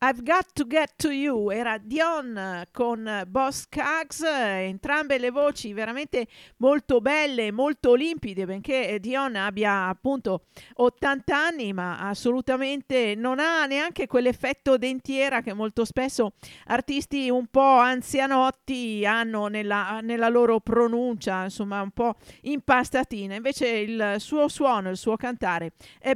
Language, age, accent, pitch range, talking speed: Italian, 50-69, native, 210-270 Hz, 130 wpm